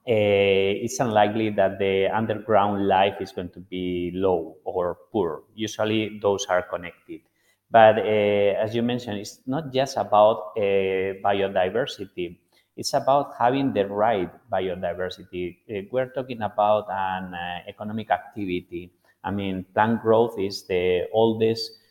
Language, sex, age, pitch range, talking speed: English, male, 30-49, 100-120 Hz, 135 wpm